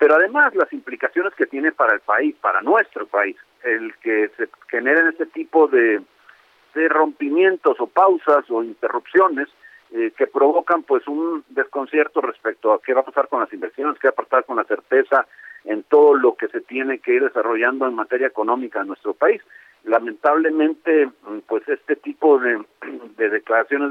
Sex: male